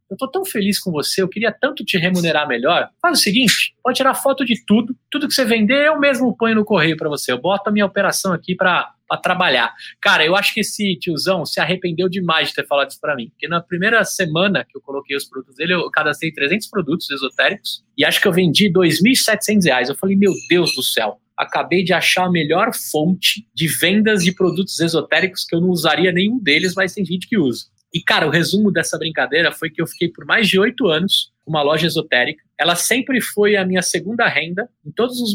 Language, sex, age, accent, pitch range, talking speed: Portuguese, male, 20-39, Brazilian, 145-200 Hz, 225 wpm